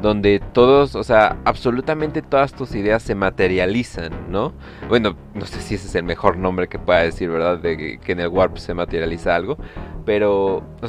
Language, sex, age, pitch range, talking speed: Spanish, male, 30-49, 90-110 Hz, 195 wpm